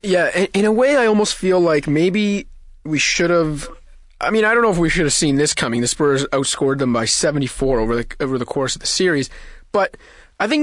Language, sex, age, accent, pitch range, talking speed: English, male, 30-49, American, 125-155 Hz, 230 wpm